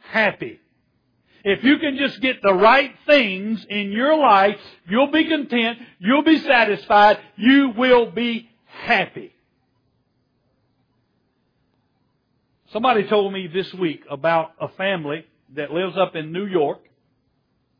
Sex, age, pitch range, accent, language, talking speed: male, 60-79, 160-220 Hz, American, English, 120 wpm